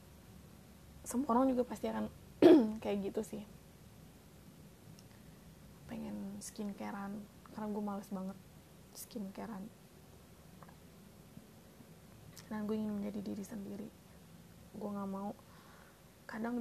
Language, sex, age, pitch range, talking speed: Indonesian, female, 20-39, 190-210 Hz, 90 wpm